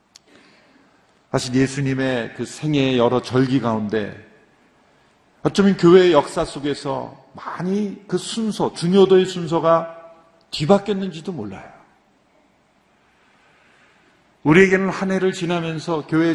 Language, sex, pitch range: Korean, male, 140-200 Hz